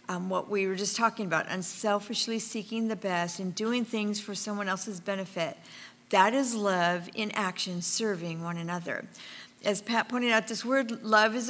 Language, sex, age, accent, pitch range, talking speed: English, female, 50-69, American, 190-230 Hz, 175 wpm